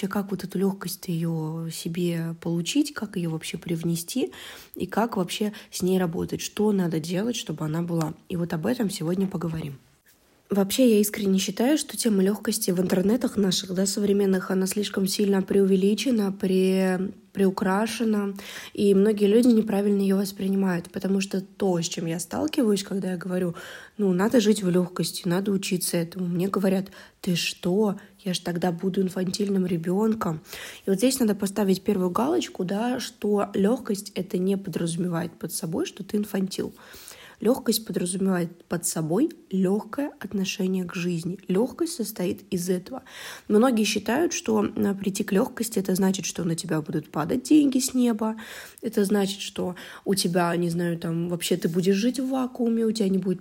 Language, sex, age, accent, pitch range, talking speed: Russian, female, 20-39, native, 180-215 Hz, 165 wpm